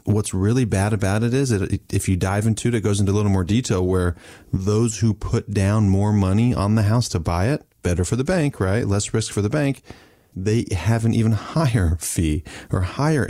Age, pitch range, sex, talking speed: 30-49, 95-110 Hz, male, 225 wpm